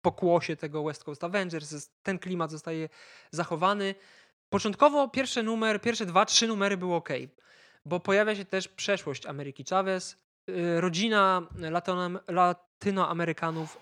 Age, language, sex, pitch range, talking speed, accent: 20-39, Polish, male, 150-180 Hz, 115 wpm, native